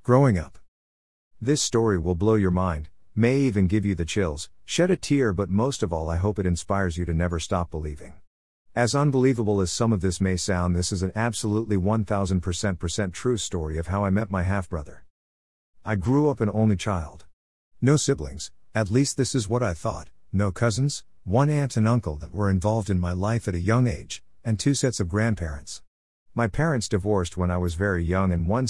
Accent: American